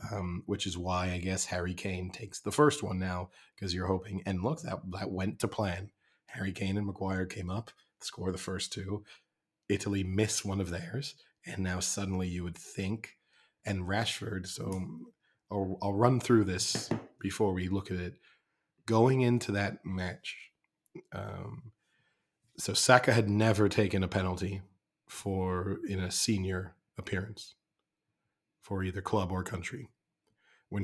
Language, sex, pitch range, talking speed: English, male, 95-105 Hz, 155 wpm